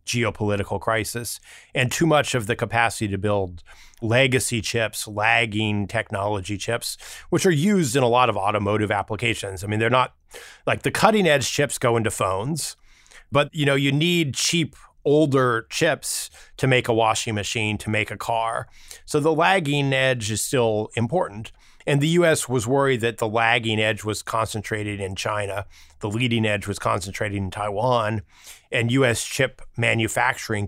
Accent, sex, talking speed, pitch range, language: American, male, 160 wpm, 105-125 Hz, English